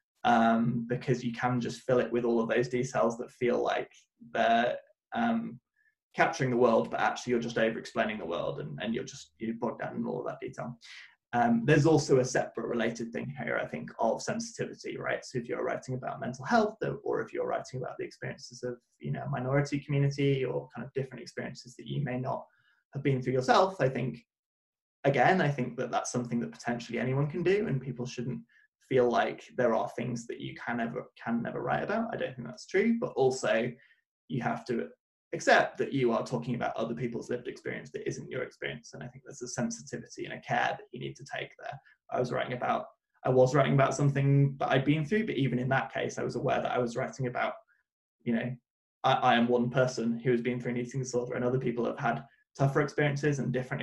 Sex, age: male, 20-39